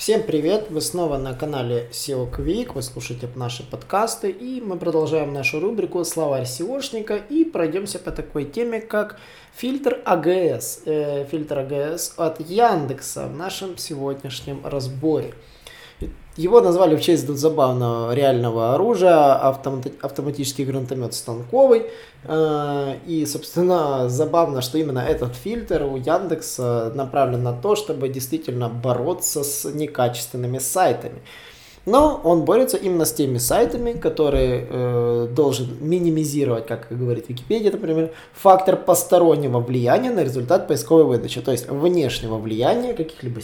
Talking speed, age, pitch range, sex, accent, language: 125 wpm, 20-39, 130-175 Hz, male, native, Russian